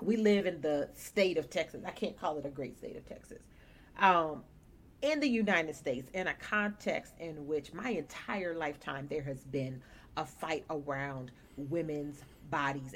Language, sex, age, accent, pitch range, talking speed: English, female, 40-59, American, 140-175 Hz, 170 wpm